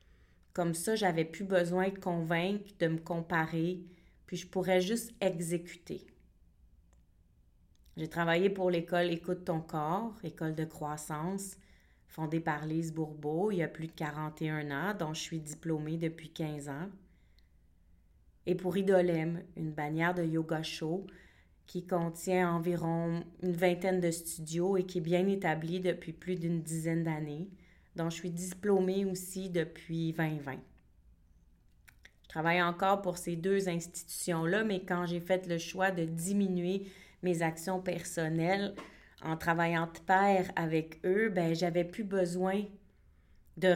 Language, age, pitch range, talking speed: French, 30-49, 155-180 Hz, 145 wpm